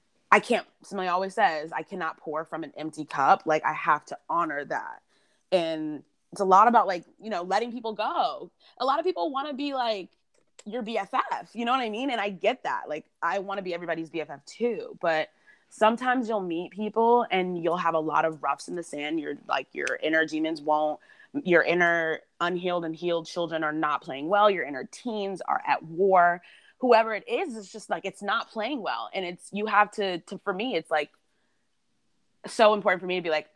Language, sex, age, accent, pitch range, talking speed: English, female, 20-39, American, 170-225 Hz, 215 wpm